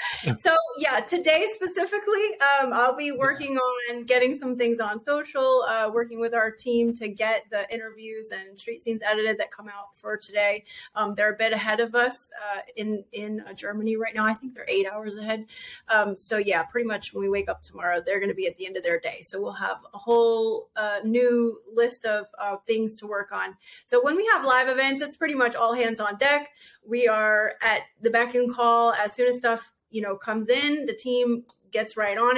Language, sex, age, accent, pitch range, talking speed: English, female, 30-49, American, 215-250 Hz, 220 wpm